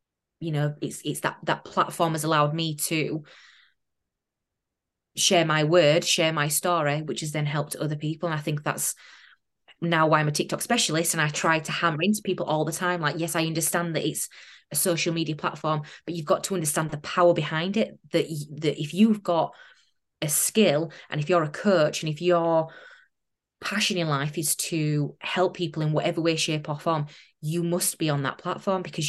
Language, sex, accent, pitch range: English, female, British, 155-180 Hz